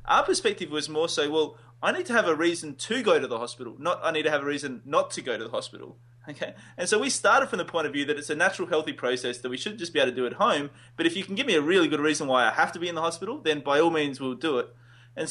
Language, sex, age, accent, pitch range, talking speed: English, male, 20-39, Australian, 130-175 Hz, 320 wpm